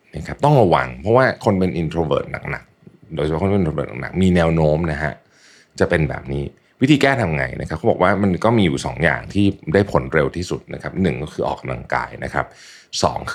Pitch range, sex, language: 75-100 Hz, male, Thai